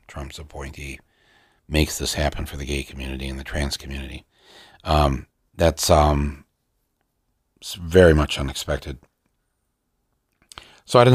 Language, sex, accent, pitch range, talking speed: English, male, American, 75-100 Hz, 120 wpm